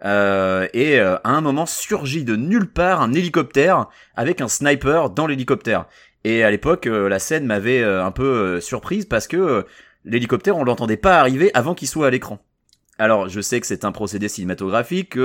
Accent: French